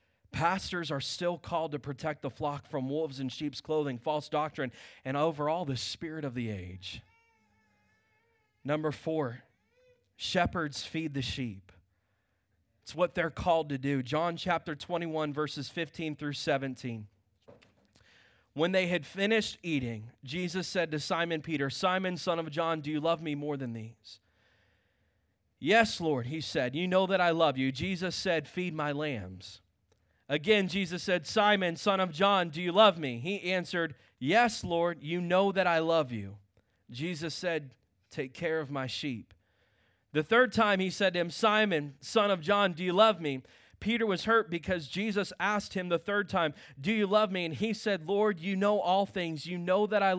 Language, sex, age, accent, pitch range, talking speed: English, male, 20-39, American, 130-185 Hz, 175 wpm